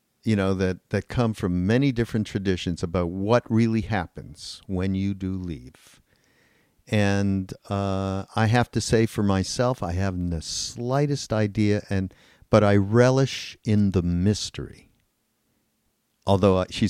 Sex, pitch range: male, 95-120 Hz